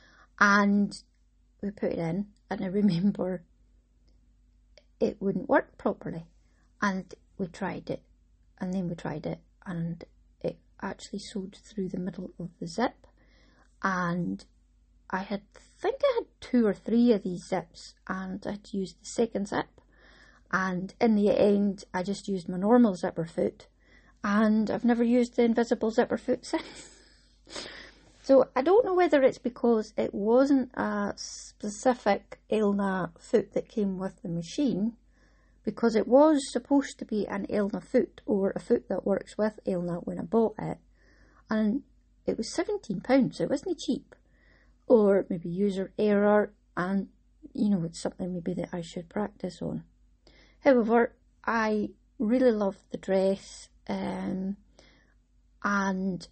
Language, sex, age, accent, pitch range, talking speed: English, female, 30-49, British, 185-240 Hz, 150 wpm